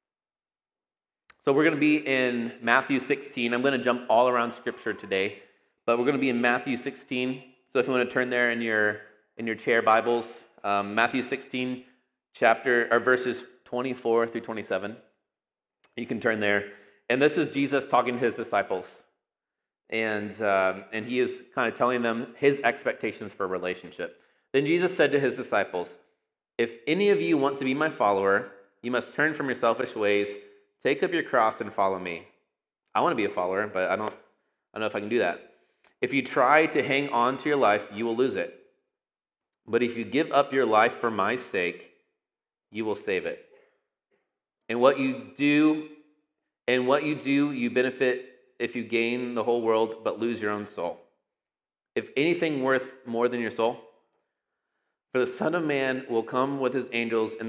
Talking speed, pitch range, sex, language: 190 wpm, 115-140 Hz, male, English